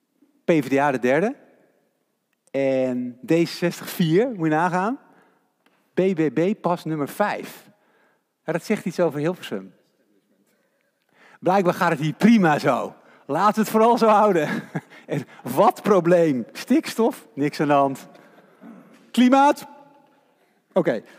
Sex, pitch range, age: male, 135-195 Hz, 50-69